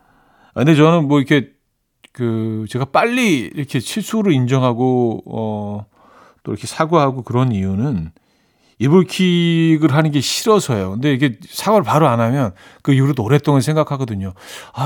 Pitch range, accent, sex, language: 110-150 Hz, native, male, Korean